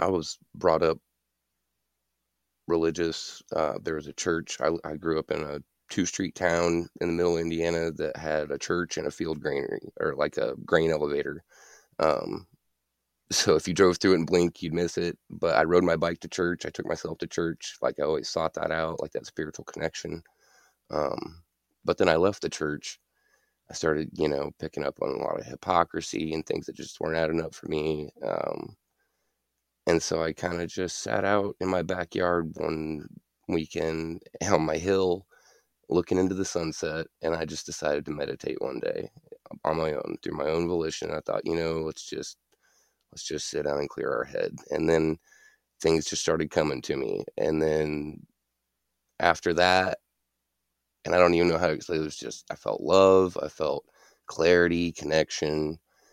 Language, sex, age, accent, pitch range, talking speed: English, male, 20-39, American, 75-85 Hz, 190 wpm